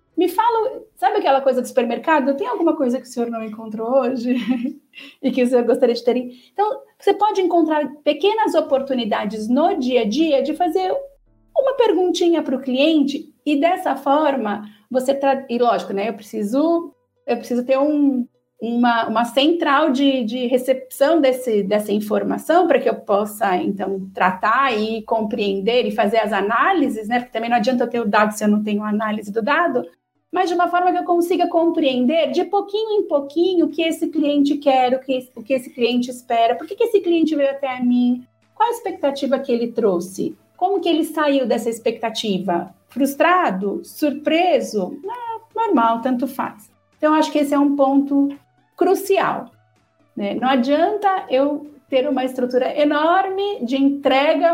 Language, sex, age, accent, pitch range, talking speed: Portuguese, female, 40-59, Brazilian, 240-325 Hz, 175 wpm